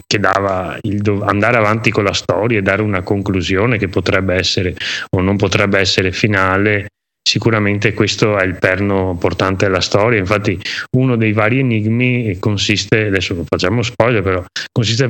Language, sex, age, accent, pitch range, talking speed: Italian, male, 30-49, native, 95-120 Hz, 165 wpm